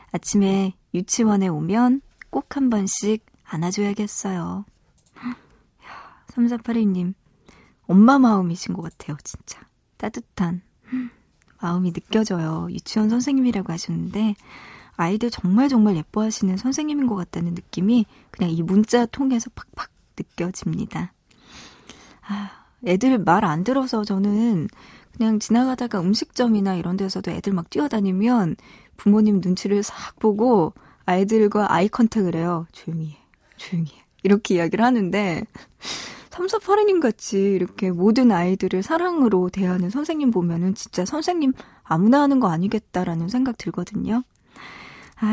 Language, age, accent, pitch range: Korean, 40-59, native, 180-240 Hz